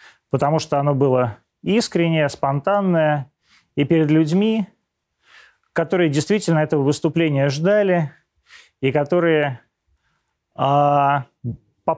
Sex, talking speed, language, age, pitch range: male, 85 wpm, Russian, 30-49, 115-165 Hz